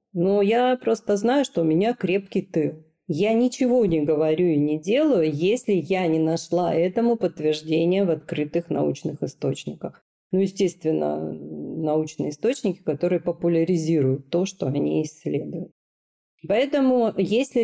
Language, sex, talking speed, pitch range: Russian, female, 130 wpm, 160-205 Hz